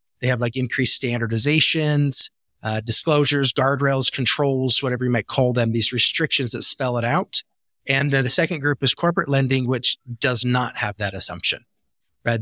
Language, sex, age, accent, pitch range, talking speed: English, male, 30-49, American, 120-145 Hz, 170 wpm